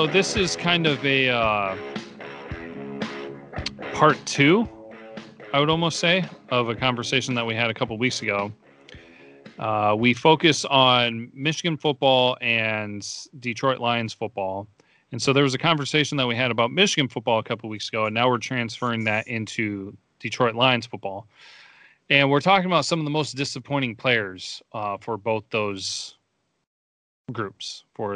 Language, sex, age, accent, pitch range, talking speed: English, male, 30-49, American, 105-135 Hz, 160 wpm